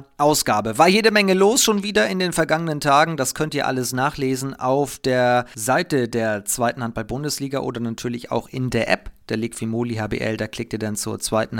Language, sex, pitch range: German, male, 115-145 Hz